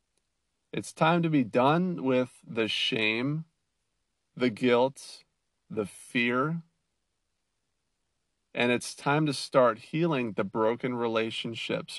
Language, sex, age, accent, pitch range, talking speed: English, male, 40-59, American, 105-135 Hz, 105 wpm